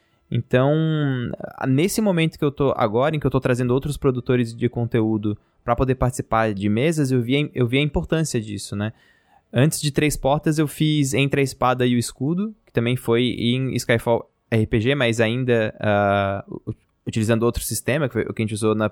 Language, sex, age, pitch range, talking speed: Portuguese, male, 20-39, 110-145 Hz, 195 wpm